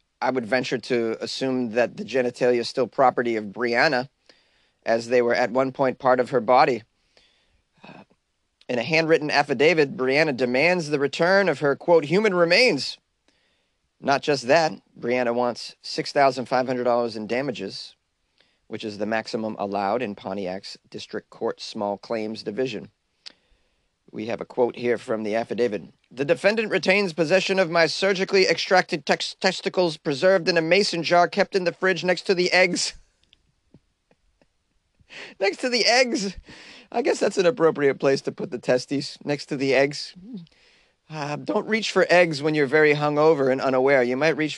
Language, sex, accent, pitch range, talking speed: English, male, American, 120-170 Hz, 160 wpm